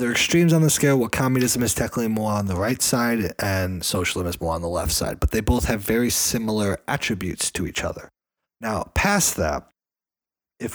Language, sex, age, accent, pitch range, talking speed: English, male, 30-49, American, 85-110 Hz, 200 wpm